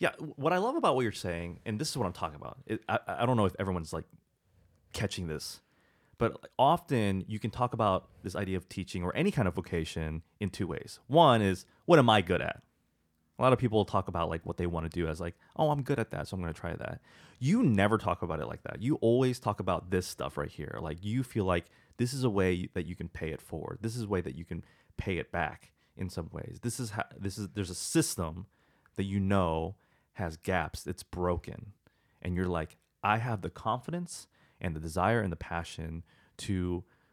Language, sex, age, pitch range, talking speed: English, male, 30-49, 85-115 Hz, 235 wpm